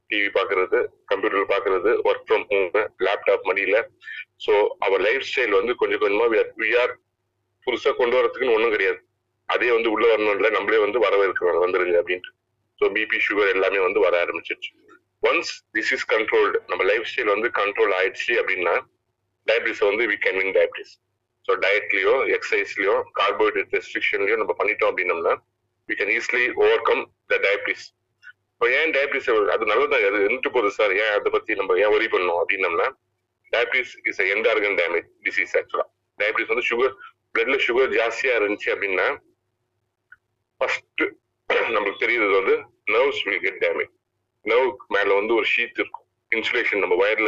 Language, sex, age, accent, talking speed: Tamil, male, 30-49, native, 90 wpm